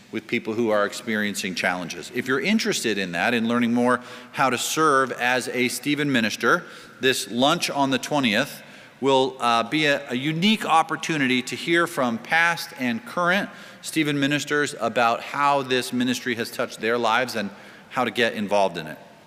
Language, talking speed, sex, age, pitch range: English, 175 wpm, male, 40-59, 115-145 Hz